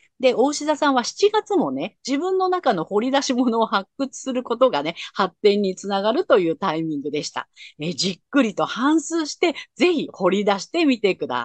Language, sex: Japanese, female